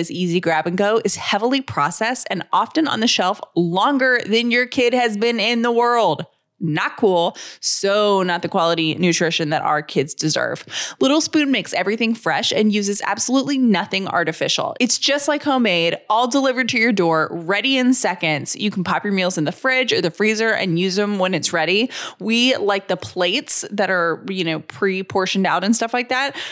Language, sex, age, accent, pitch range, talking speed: English, female, 20-39, American, 180-250 Hz, 195 wpm